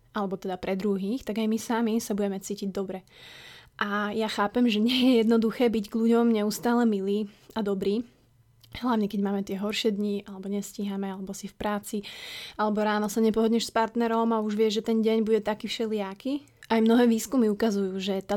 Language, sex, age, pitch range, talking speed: Slovak, female, 20-39, 200-225 Hz, 195 wpm